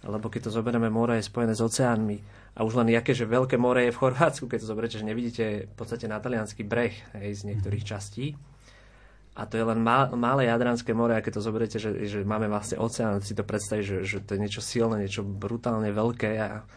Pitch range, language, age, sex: 110-125 Hz, Slovak, 20-39, male